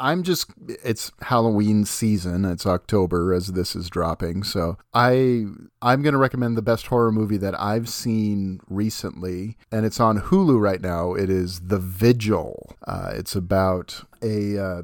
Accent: American